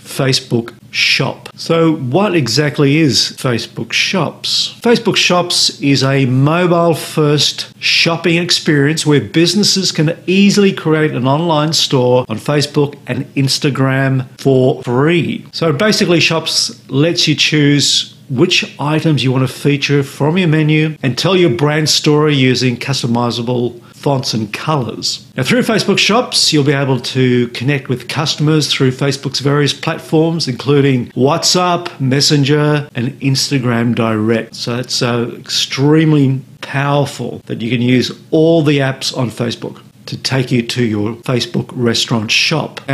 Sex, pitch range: male, 130-165 Hz